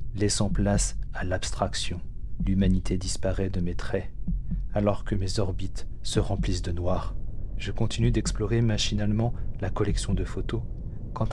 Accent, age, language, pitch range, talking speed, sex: French, 30-49, French, 95-110 Hz, 140 wpm, male